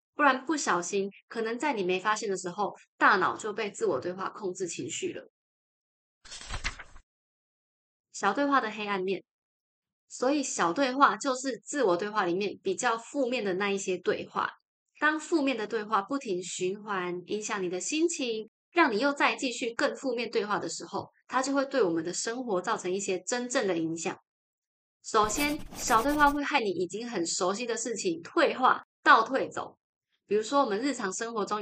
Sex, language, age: female, Chinese, 20-39